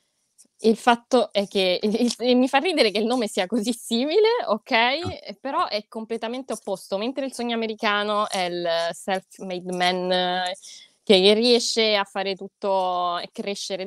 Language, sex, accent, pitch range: Italian, female, native, 175-210 Hz